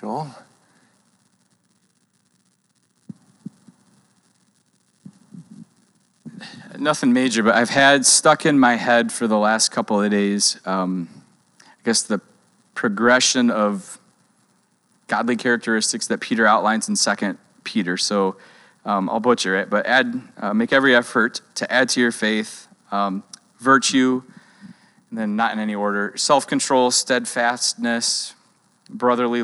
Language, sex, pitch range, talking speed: English, male, 105-145 Hz, 115 wpm